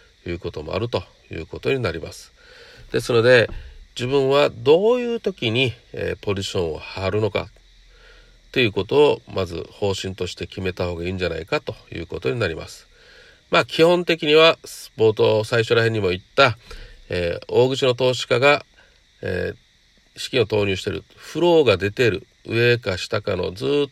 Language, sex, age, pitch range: Japanese, male, 40-59, 95-130 Hz